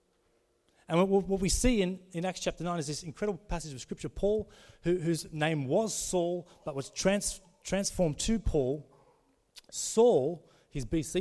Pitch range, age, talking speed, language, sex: 155-195 Hz, 30-49, 160 wpm, English, male